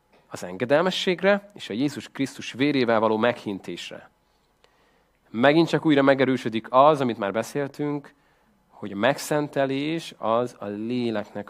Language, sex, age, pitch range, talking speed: Hungarian, male, 30-49, 110-150 Hz, 120 wpm